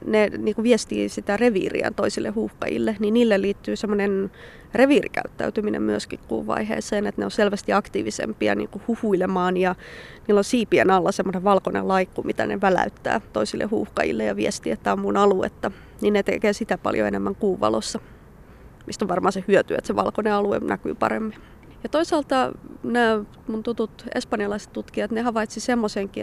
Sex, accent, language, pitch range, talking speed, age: female, native, Finnish, 180-215 Hz, 165 wpm, 20-39